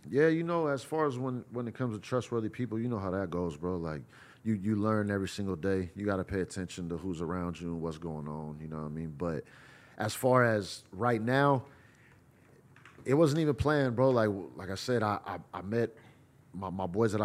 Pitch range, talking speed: 105-140 Hz, 235 wpm